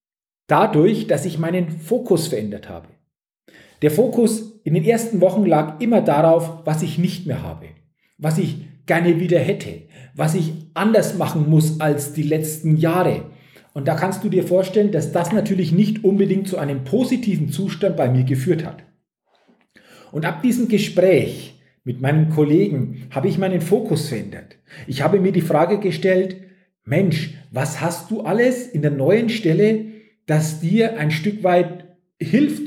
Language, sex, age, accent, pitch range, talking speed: German, male, 40-59, German, 155-205 Hz, 160 wpm